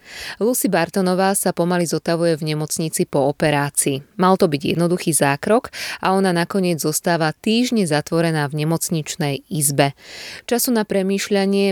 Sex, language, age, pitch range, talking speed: female, Slovak, 20-39, 150-195 Hz, 135 wpm